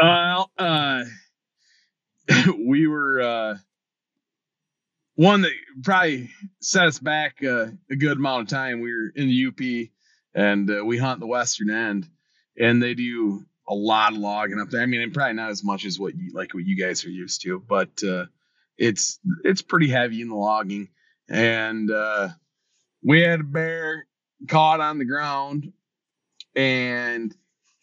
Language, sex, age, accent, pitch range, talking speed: English, male, 30-49, American, 110-155 Hz, 160 wpm